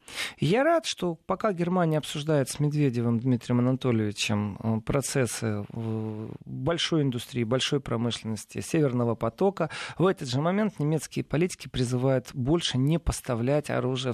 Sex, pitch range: male, 120-165 Hz